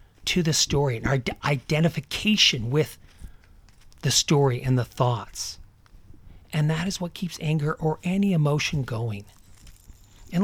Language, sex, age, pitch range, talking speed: English, male, 40-59, 110-175 Hz, 130 wpm